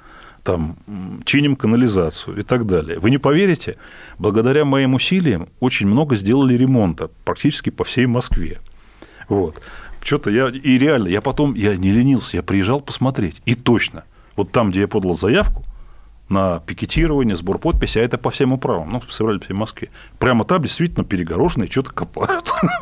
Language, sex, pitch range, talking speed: Russian, male, 90-130 Hz, 160 wpm